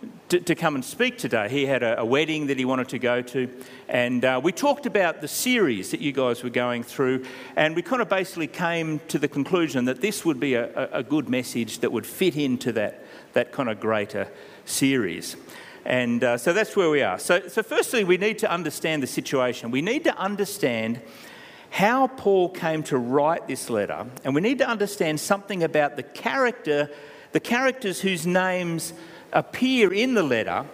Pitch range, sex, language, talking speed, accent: 140-205 Hz, male, English, 195 wpm, Australian